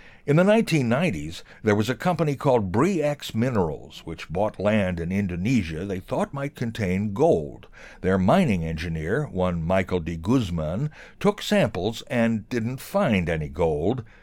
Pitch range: 90-130 Hz